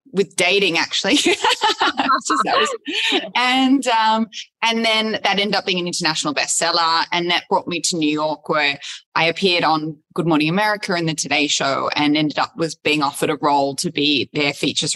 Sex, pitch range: female, 160-215 Hz